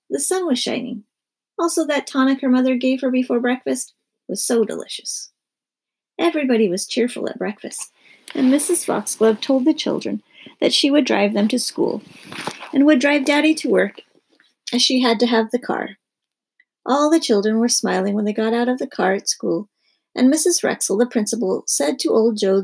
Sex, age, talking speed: female, 40-59, 185 wpm